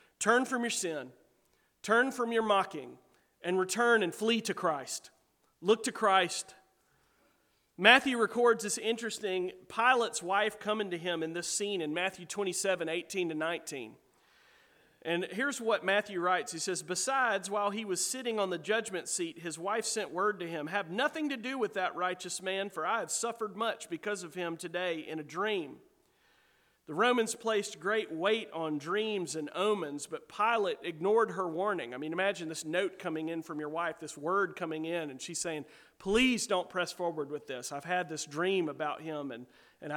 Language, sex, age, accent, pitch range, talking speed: English, male, 40-59, American, 170-215 Hz, 185 wpm